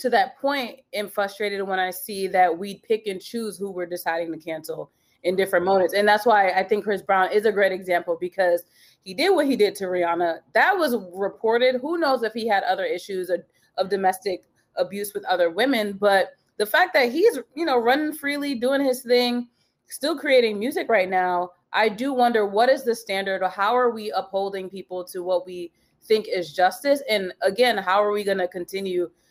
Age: 30-49